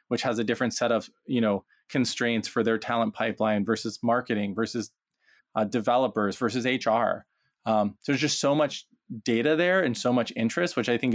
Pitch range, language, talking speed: 110-125 Hz, English, 190 wpm